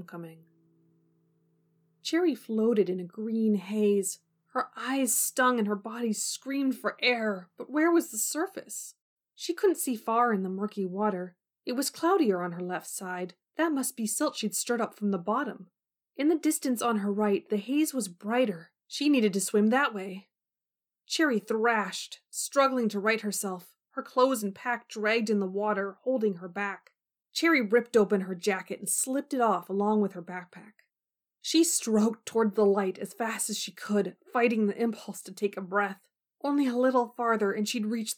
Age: 20-39